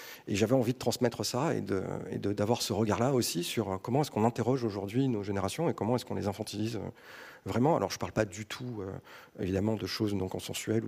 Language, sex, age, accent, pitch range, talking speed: French, male, 40-59, French, 95-120 Hz, 230 wpm